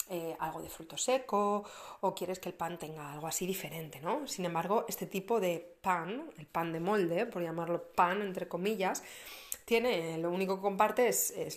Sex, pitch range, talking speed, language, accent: female, 170-215 Hz, 190 wpm, Spanish, Spanish